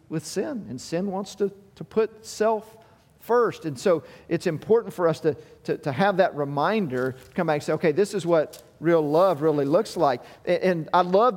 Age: 50-69